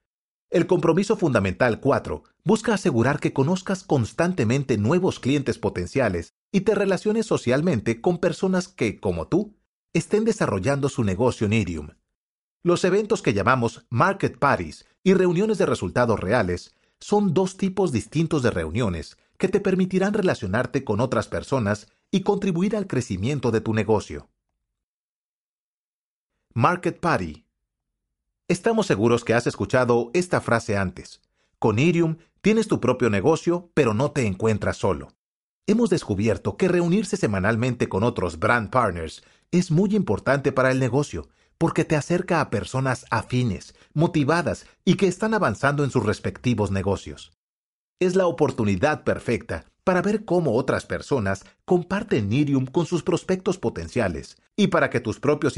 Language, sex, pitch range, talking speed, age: Spanish, male, 110-180 Hz, 140 wpm, 40-59